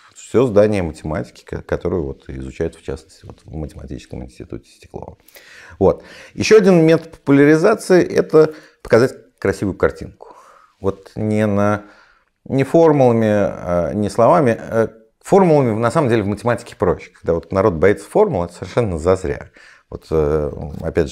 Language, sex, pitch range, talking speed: Russian, male, 85-120 Hz, 115 wpm